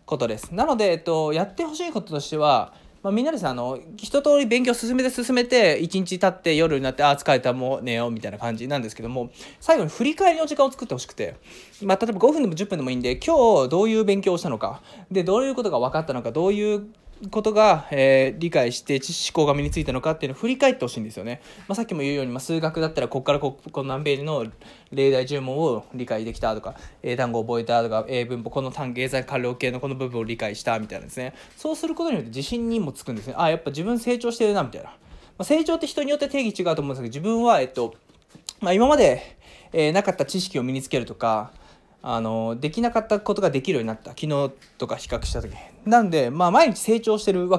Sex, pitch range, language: male, 130-215 Hz, Japanese